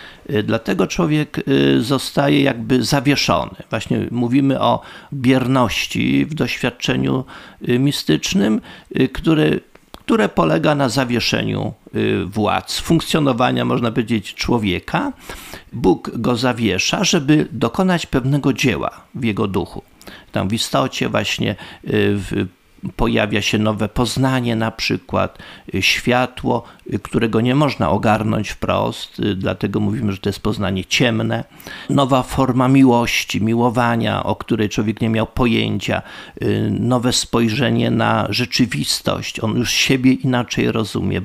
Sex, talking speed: male, 110 wpm